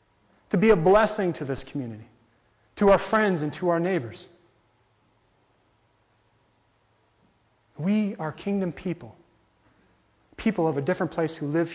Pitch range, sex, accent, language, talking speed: 110-185 Hz, male, American, English, 130 wpm